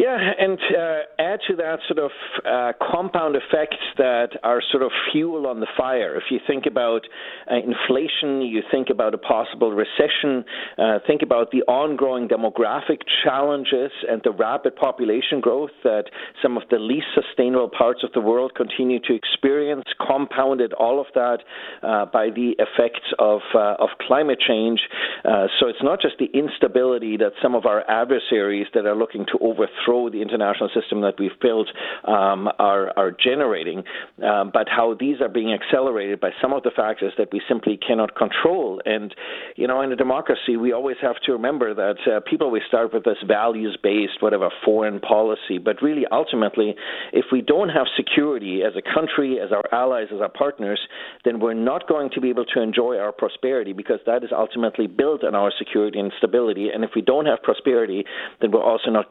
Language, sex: English, male